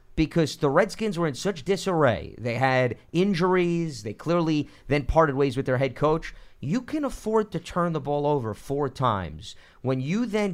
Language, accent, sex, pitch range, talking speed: English, American, male, 120-160 Hz, 180 wpm